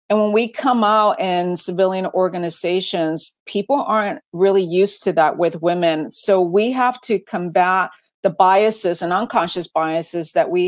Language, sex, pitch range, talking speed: English, female, 180-225 Hz, 155 wpm